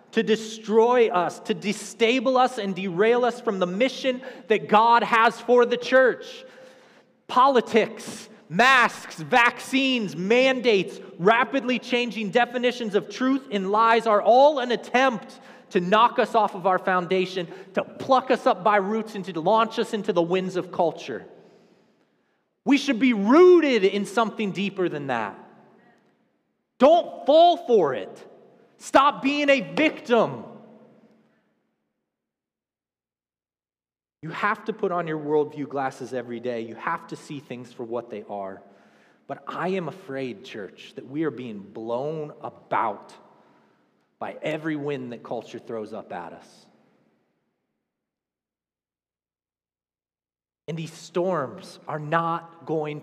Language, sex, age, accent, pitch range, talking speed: English, male, 30-49, American, 165-245 Hz, 130 wpm